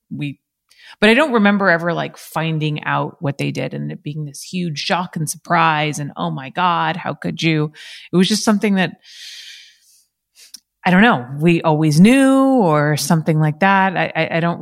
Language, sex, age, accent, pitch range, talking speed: English, female, 30-49, American, 140-170 Hz, 190 wpm